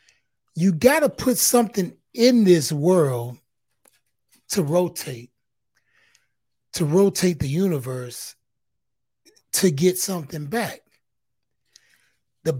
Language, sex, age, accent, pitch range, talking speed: English, male, 30-49, American, 125-170 Hz, 90 wpm